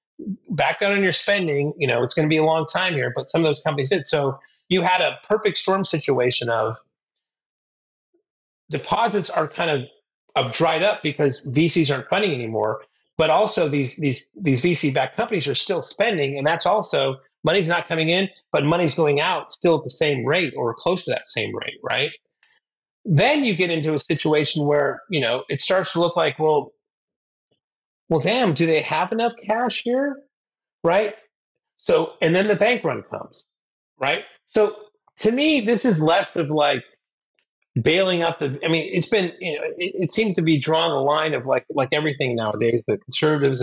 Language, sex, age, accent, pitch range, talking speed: English, male, 30-49, American, 140-200 Hz, 190 wpm